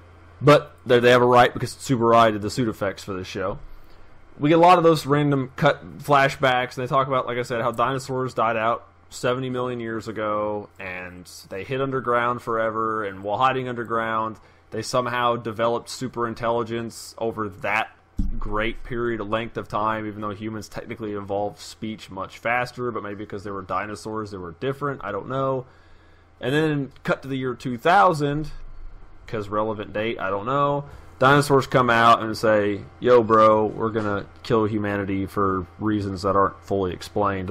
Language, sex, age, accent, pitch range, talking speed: English, male, 20-39, American, 100-130 Hz, 175 wpm